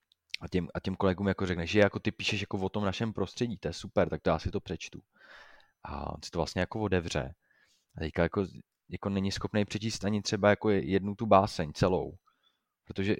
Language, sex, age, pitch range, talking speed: Slovak, male, 20-39, 90-105 Hz, 195 wpm